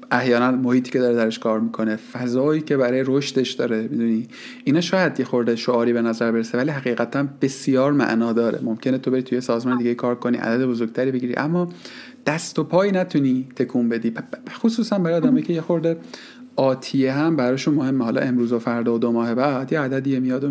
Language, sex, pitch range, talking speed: Persian, male, 120-175 Hz, 190 wpm